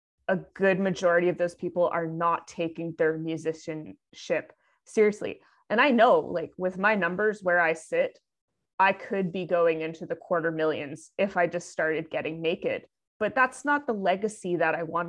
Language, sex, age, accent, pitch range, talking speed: English, female, 20-39, American, 170-190 Hz, 175 wpm